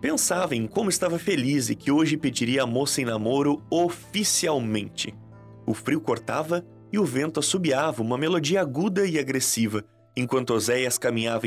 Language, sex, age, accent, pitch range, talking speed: Portuguese, male, 30-49, Brazilian, 105-160 Hz, 150 wpm